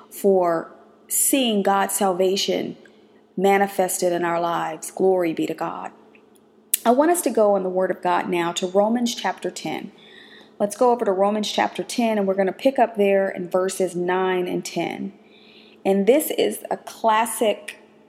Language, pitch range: English, 185-225 Hz